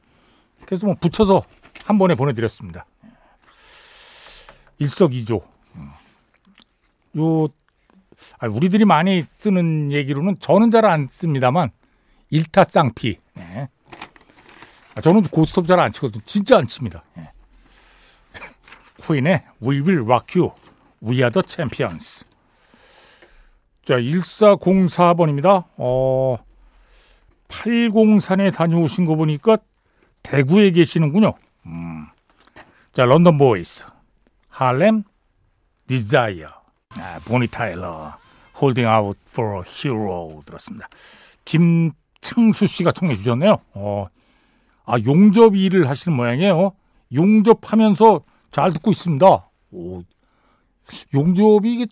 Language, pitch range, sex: Korean, 125-200 Hz, male